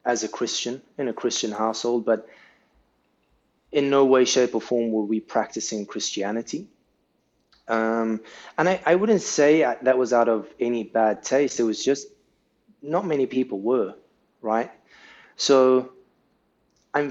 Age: 20-39